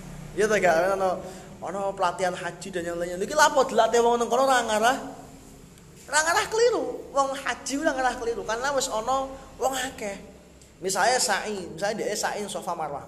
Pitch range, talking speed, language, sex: 180-235 Hz, 155 wpm, Indonesian, male